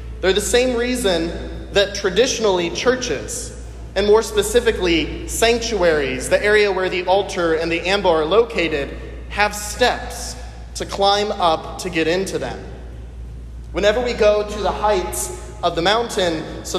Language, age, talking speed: English, 30-49, 145 wpm